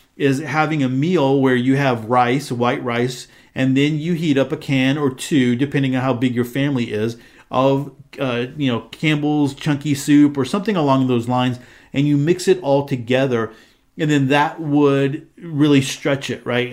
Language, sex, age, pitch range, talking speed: English, male, 40-59, 125-145 Hz, 185 wpm